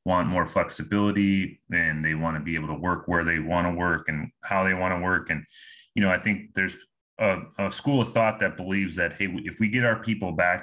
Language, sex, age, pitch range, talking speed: English, male, 30-49, 85-100 Hz, 245 wpm